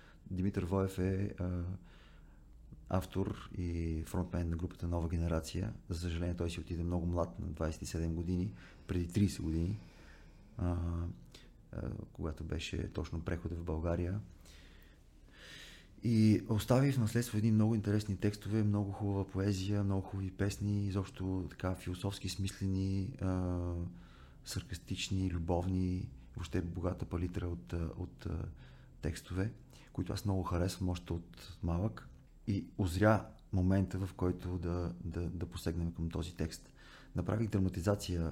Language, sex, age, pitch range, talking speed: Bulgarian, male, 30-49, 85-100 Hz, 125 wpm